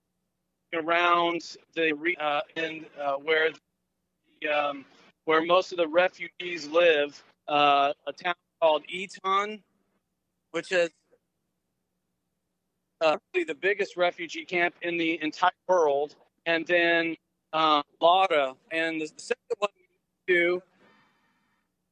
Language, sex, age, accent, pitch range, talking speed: English, male, 40-59, American, 165-195 Hz, 110 wpm